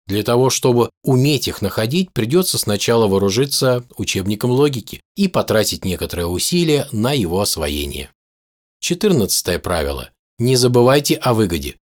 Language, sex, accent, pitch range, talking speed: Russian, male, native, 95-130 Hz, 120 wpm